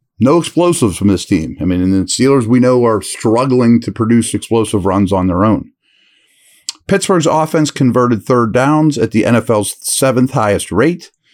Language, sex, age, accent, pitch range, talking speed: English, male, 40-59, American, 100-135 Hz, 170 wpm